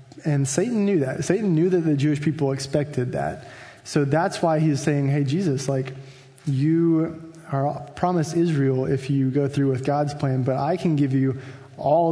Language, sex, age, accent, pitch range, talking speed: English, male, 20-39, American, 135-160 Hz, 185 wpm